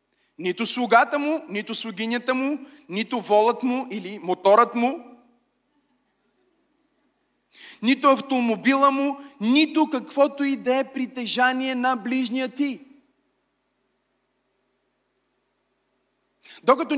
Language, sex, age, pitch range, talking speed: Bulgarian, male, 30-49, 230-285 Hz, 90 wpm